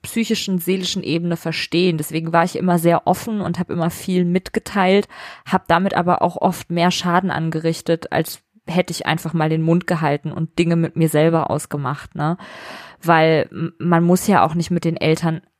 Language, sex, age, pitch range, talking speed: German, female, 20-39, 170-200 Hz, 175 wpm